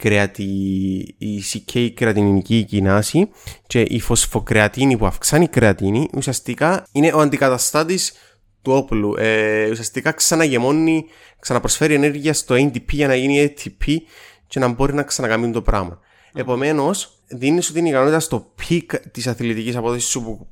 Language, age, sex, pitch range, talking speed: Greek, 20-39, male, 105-135 Hz, 135 wpm